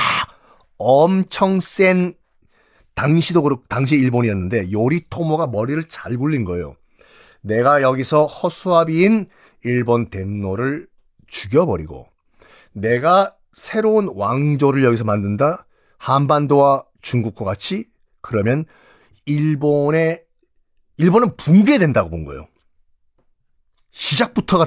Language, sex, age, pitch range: Korean, male, 40-59, 120-190 Hz